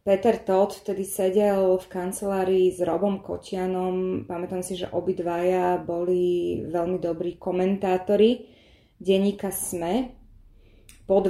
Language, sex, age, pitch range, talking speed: Slovak, female, 20-39, 180-210 Hz, 105 wpm